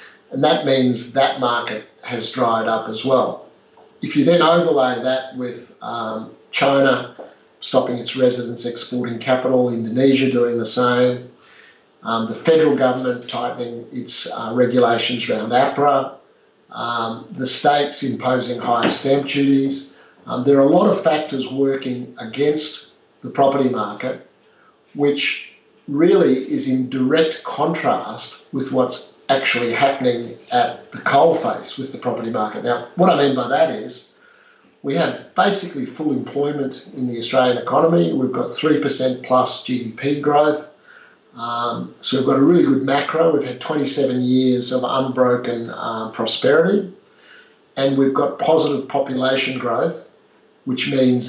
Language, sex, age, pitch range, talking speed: English, male, 50-69, 120-140 Hz, 140 wpm